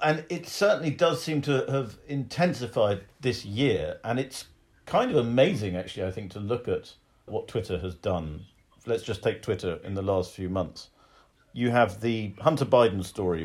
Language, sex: English, male